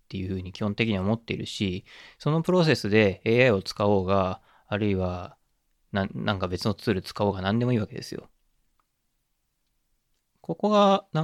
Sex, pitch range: male, 95-125 Hz